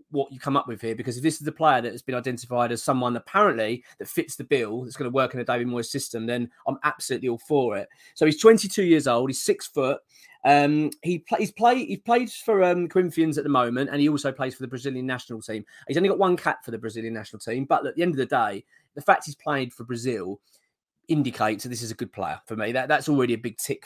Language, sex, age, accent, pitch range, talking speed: English, male, 20-39, British, 125-180 Hz, 260 wpm